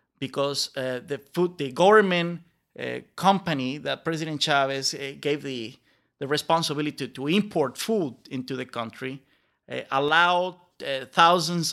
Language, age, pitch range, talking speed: English, 30-49, 130-160 Hz, 135 wpm